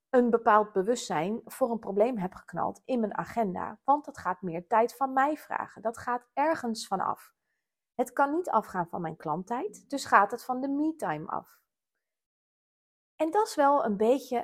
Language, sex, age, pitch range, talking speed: Dutch, female, 30-49, 200-270 Hz, 185 wpm